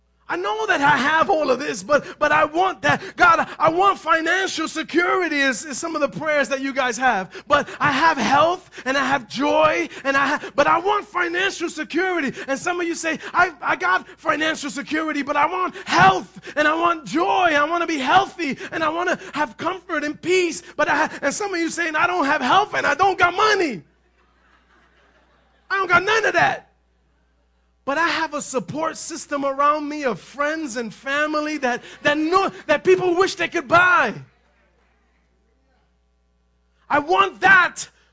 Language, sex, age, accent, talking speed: English, male, 20-39, American, 190 wpm